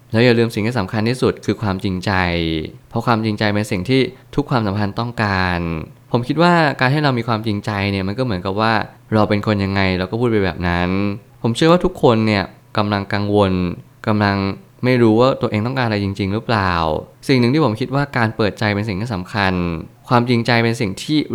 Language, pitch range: Thai, 100-125 Hz